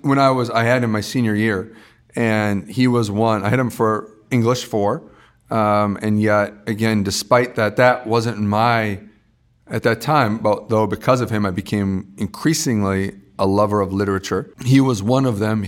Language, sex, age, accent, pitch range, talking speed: English, male, 40-59, American, 105-125 Hz, 185 wpm